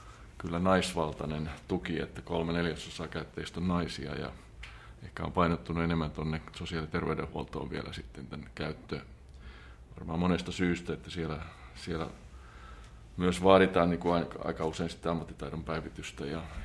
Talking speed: 135 wpm